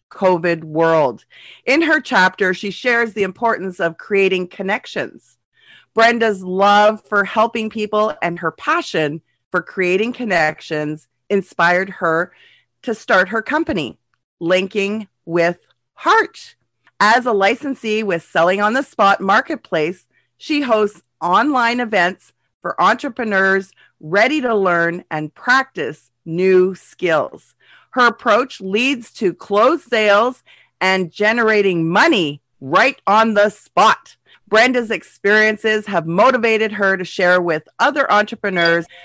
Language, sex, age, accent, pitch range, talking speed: English, female, 40-59, American, 170-225 Hz, 120 wpm